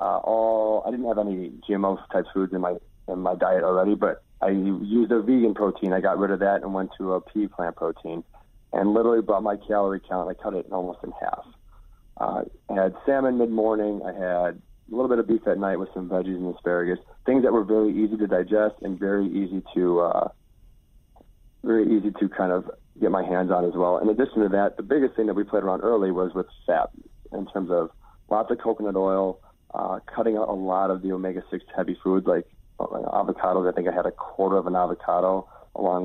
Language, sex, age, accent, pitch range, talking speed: English, male, 30-49, American, 90-110 Hz, 220 wpm